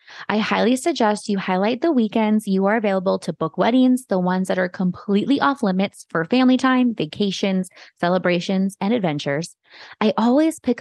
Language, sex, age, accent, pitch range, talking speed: English, female, 20-39, American, 180-230 Hz, 165 wpm